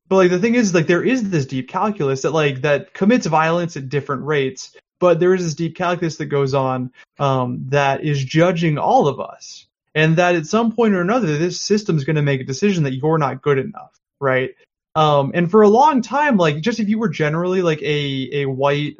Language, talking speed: English, 225 wpm